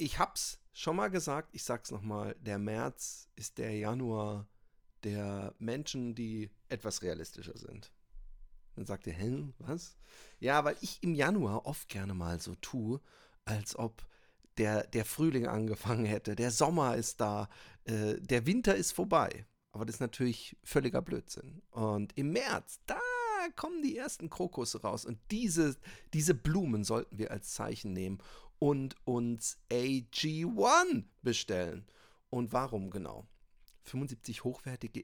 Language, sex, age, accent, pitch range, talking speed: German, male, 40-59, German, 110-160 Hz, 145 wpm